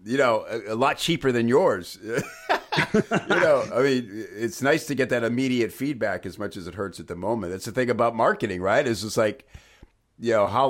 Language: English